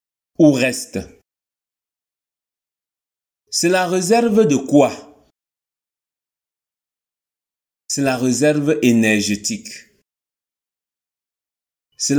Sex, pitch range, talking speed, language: male, 115-160 Hz, 60 wpm, French